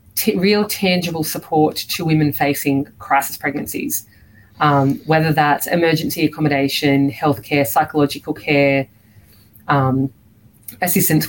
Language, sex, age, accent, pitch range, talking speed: English, female, 30-49, Australian, 135-170 Hz, 100 wpm